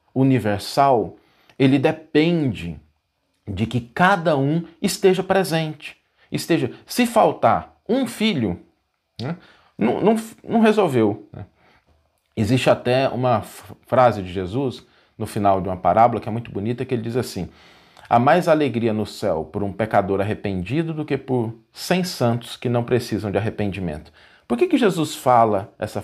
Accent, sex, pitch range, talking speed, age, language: Brazilian, male, 110-165 Hz, 150 wpm, 40-59, Portuguese